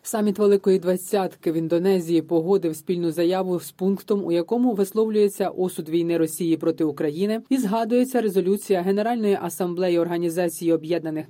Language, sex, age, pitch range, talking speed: Ukrainian, female, 30-49, 170-205 Hz, 135 wpm